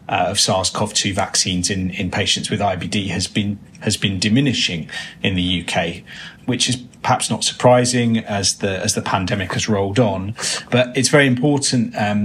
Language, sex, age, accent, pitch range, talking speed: English, male, 30-49, British, 100-115 Hz, 170 wpm